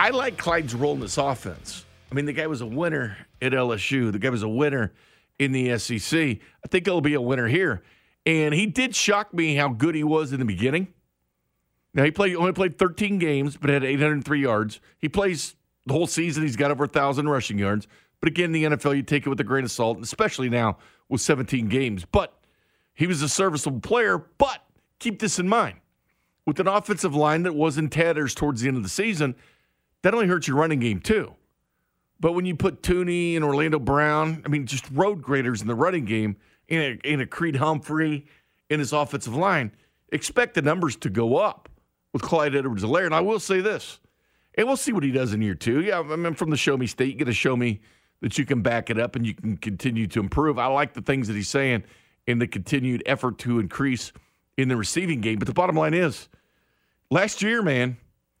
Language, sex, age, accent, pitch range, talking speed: English, male, 50-69, American, 120-165 Hz, 220 wpm